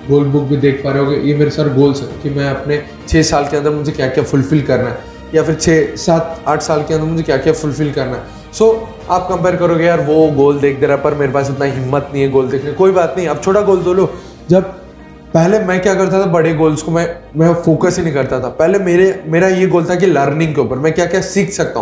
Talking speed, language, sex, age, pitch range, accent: 270 wpm, Hindi, male, 20-39, 150-190 Hz, native